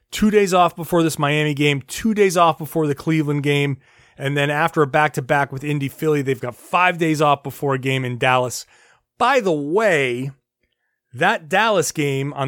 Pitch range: 130-160 Hz